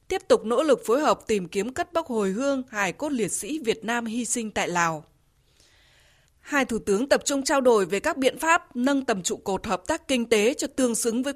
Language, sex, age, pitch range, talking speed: Vietnamese, female, 20-39, 210-285 Hz, 240 wpm